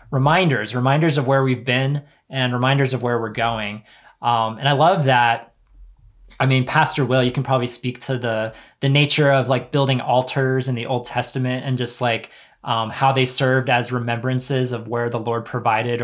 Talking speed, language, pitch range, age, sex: 190 wpm, English, 120-145 Hz, 20-39, male